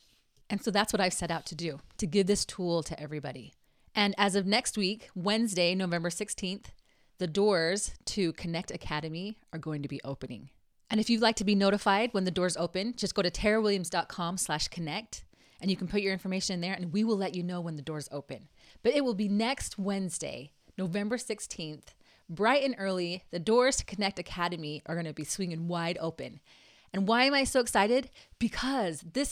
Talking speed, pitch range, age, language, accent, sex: 205 wpm, 165-220 Hz, 30-49, English, American, female